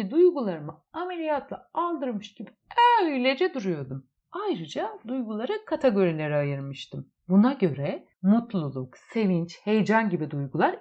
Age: 60-79